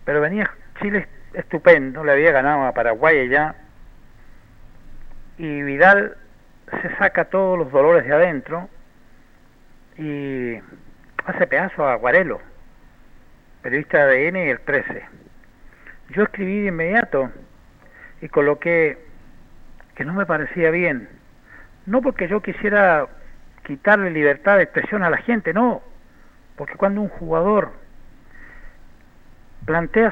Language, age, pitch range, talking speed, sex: Spanish, 60-79, 145-200 Hz, 115 wpm, male